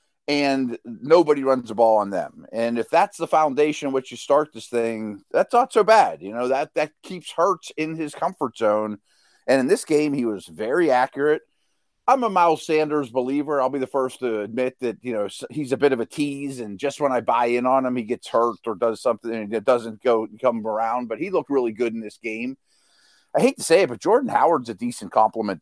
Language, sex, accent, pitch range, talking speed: English, male, American, 120-165 Hz, 230 wpm